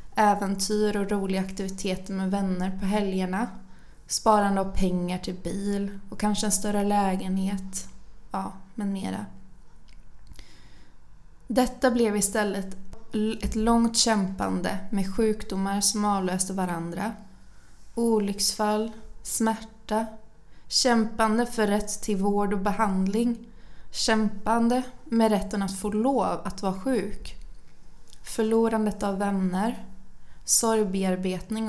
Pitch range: 195-220 Hz